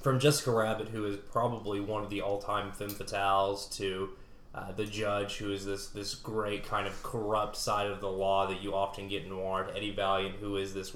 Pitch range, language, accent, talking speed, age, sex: 100-110 Hz, English, American, 215 wpm, 20-39, male